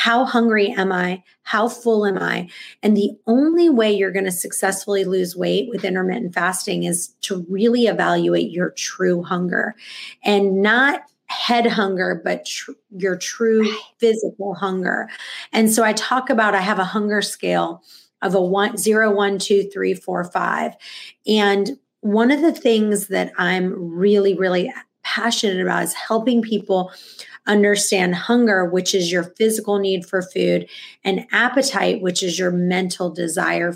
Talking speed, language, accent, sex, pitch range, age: 155 wpm, English, American, female, 185-225 Hz, 30-49